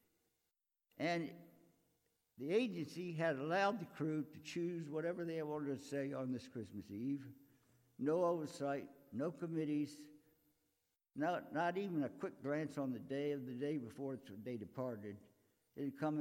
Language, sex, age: English, male, 60-79